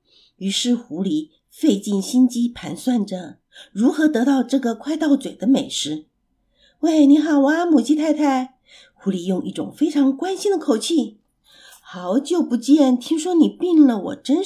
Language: Chinese